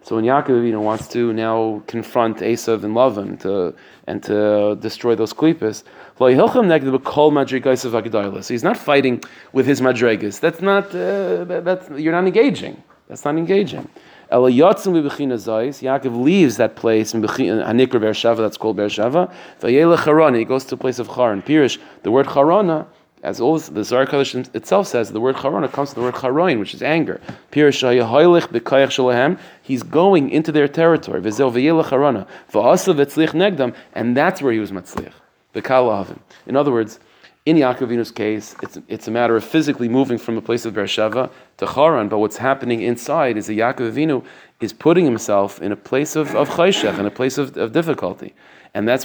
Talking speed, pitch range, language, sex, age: 165 wpm, 115-145 Hz, English, male, 30-49